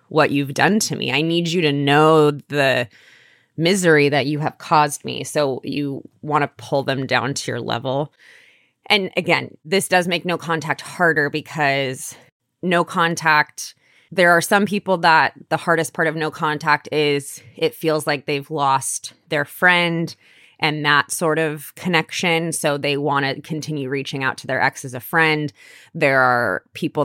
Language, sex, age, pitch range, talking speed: English, female, 20-39, 135-160 Hz, 175 wpm